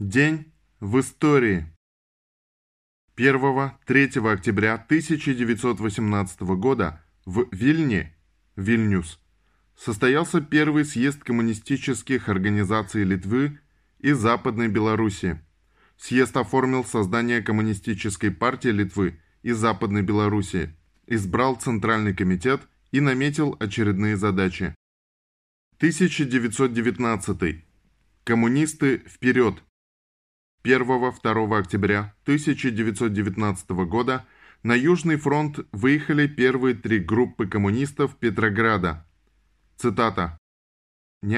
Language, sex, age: Russian, male, 10-29